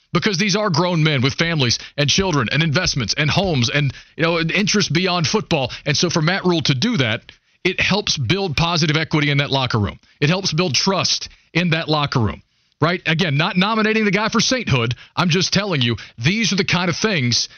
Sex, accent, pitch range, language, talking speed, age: male, American, 145-185 Hz, English, 215 wpm, 40-59